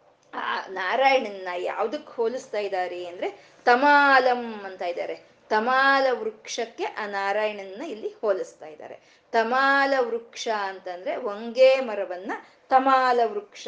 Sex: female